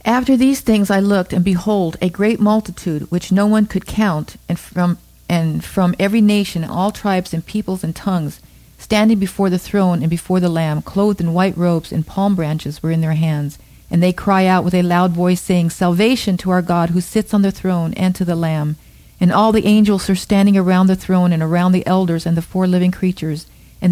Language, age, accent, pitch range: English, 40-59, American, 165-195 Hz